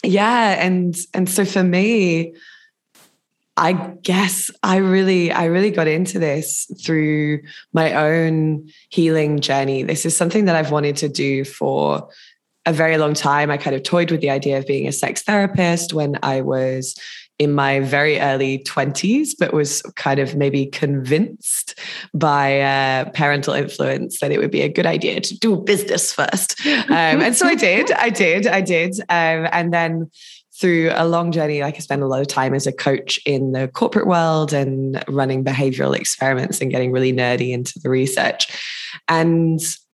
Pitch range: 140-175 Hz